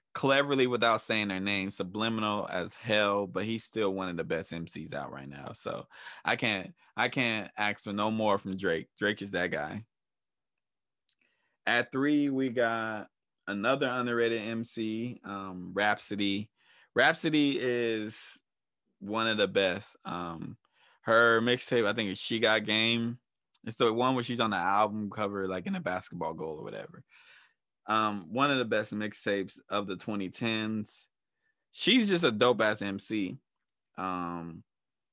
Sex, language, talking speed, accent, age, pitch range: male, English, 150 wpm, American, 20-39, 100-115 Hz